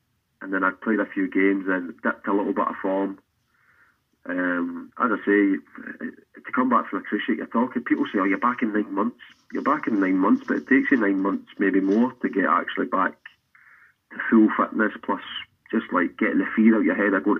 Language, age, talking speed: English, 30-49, 230 wpm